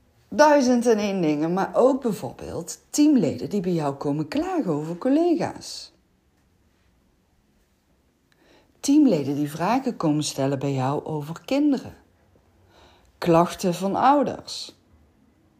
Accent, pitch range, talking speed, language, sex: Dutch, 150-220 Hz, 105 wpm, Dutch, female